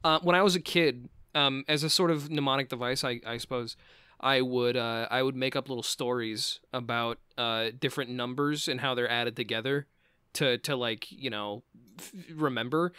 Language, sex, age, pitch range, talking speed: English, male, 20-39, 125-175 Hz, 190 wpm